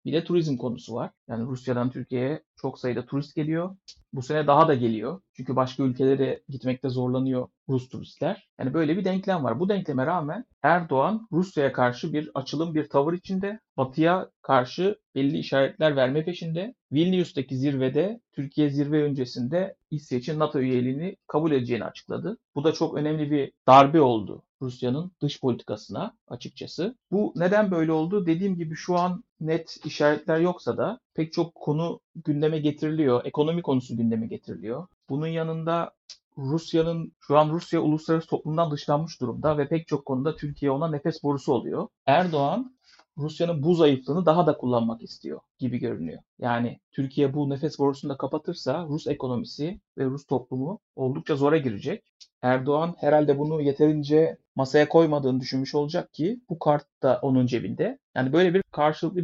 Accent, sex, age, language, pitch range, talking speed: native, male, 60-79, Turkish, 135-165 Hz, 150 wpm